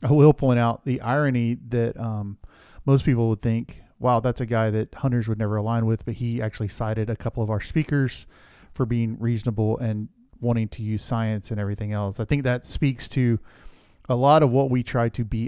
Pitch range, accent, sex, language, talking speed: 110-125 Hz, American, male, English, 215 wpm